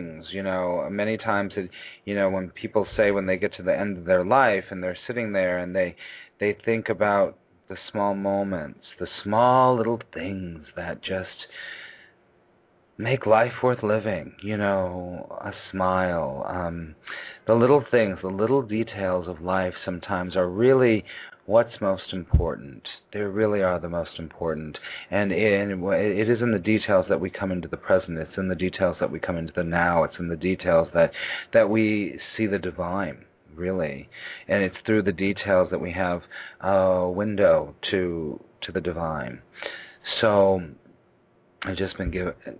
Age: 40-59